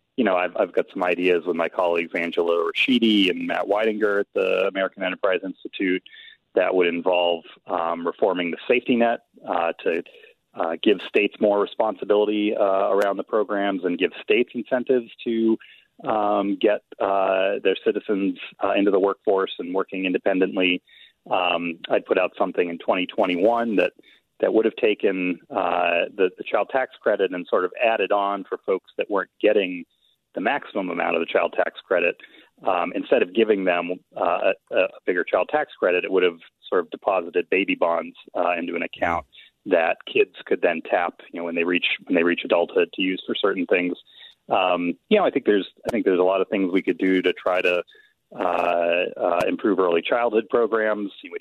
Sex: male